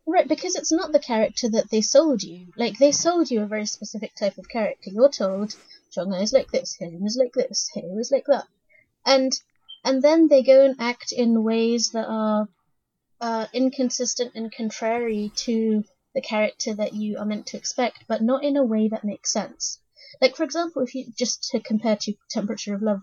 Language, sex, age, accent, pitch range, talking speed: English, female, 30-49, British, 210-270 Hz, 205 wpm